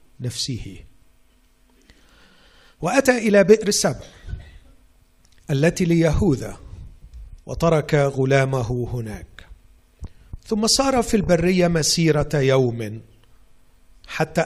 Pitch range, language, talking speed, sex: 110-160 Hz, Arabic, 70 wpm, male